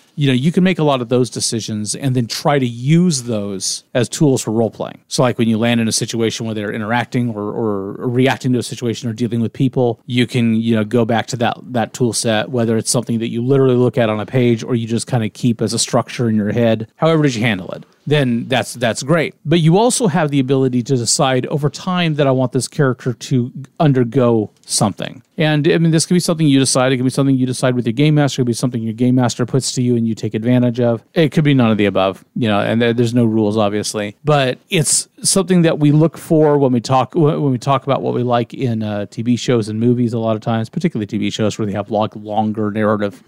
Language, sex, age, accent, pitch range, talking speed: English, male, 40-59, American, 115-140 Hz, 260 wpm